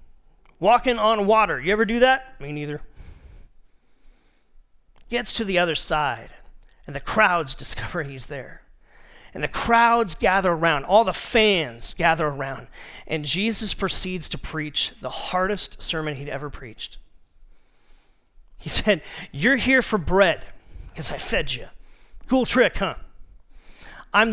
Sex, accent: male, American